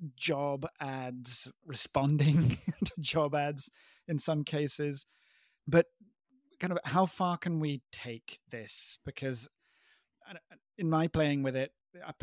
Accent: British